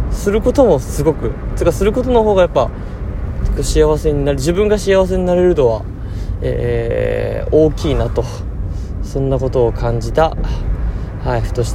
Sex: male